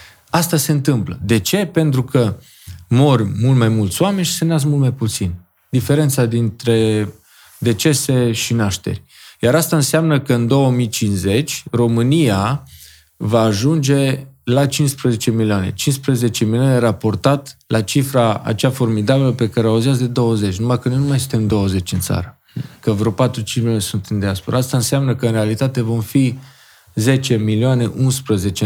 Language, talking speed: Romanian, 155 wpm